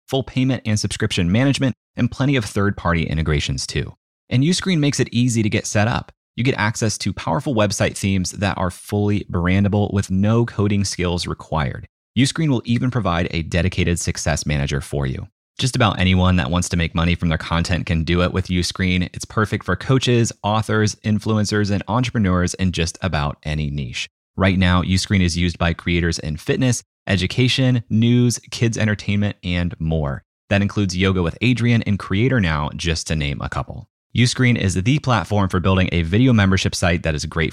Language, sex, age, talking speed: English, male, 30-49, 185 wpm